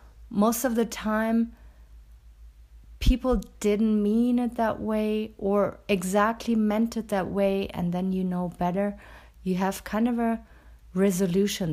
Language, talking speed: English, 140 wpm